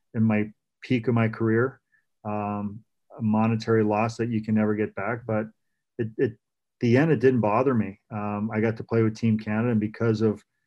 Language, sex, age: English, male, 40-59